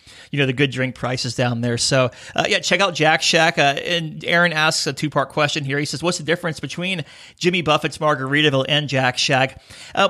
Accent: American